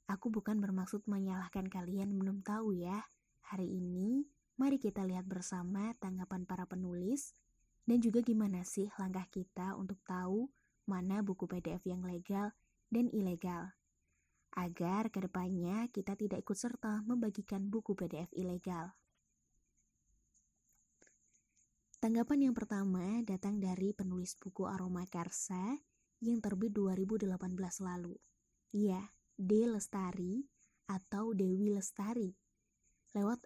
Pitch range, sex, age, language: 180-210 Hz, female, 20-39, Indonesian